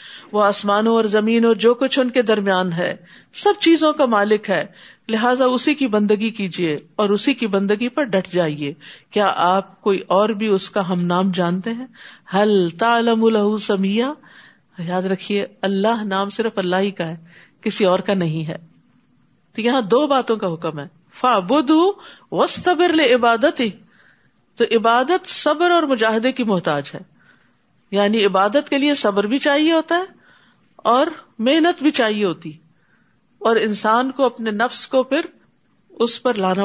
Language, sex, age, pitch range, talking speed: Urdu, female, 50-69, 190-250 Hz, 155 wpm